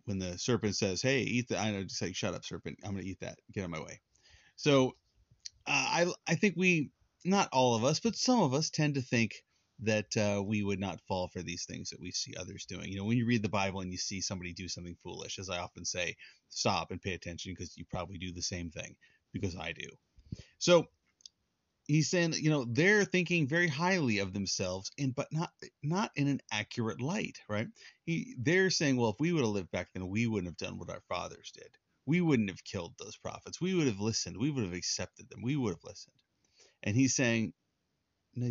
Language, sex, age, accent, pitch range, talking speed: English, male, 30-49, American, 100-145 Hz, 230 wpm